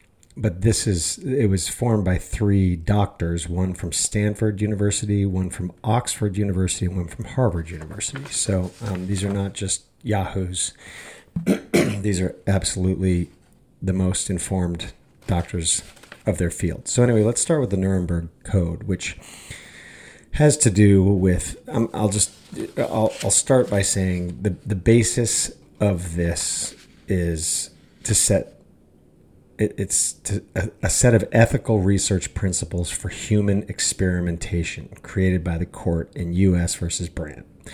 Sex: male